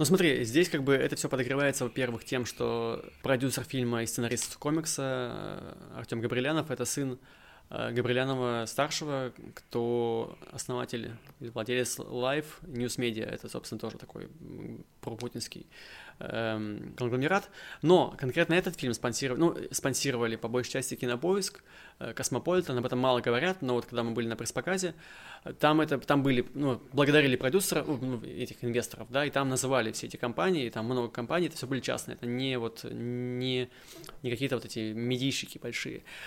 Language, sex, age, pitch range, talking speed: Russian, male, 20-39, 125-155 Hz, 150 wpm